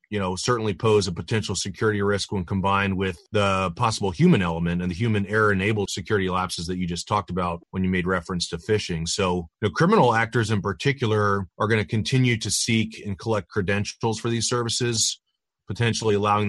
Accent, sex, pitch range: American, male, 95-115 Hz